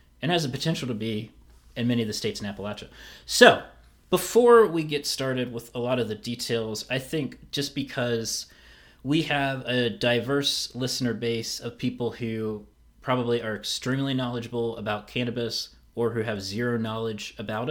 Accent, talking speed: American, 165 wpm